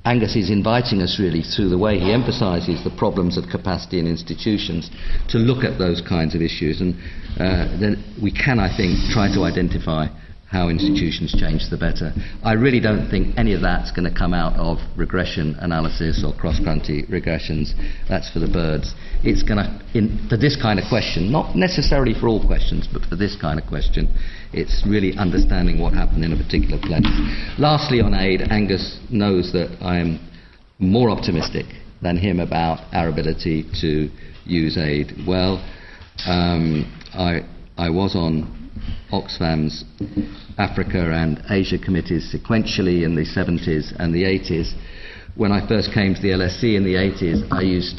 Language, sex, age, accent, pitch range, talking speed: English, male, 50-69, British, 80-100 Hz, 170 wpm